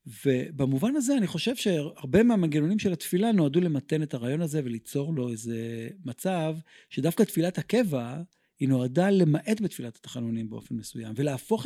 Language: Hebrew